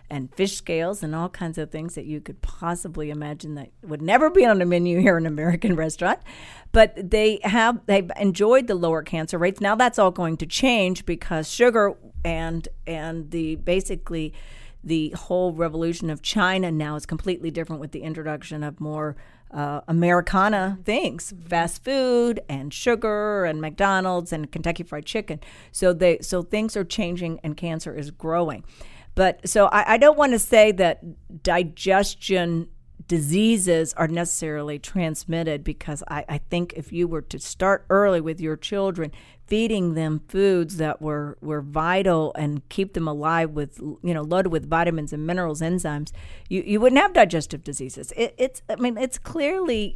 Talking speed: 170 wpm